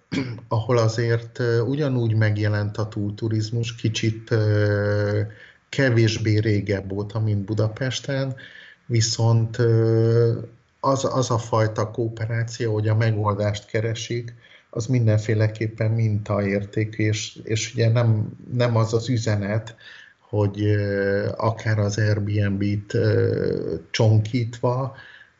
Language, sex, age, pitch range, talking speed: Hungarian, male, 50-69, 105-120 Hz, 90 wpm